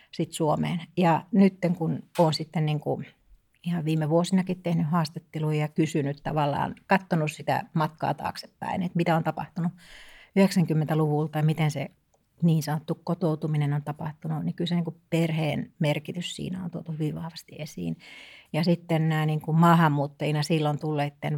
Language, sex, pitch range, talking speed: Finnish, female, 150-170 Hz, 145 wpm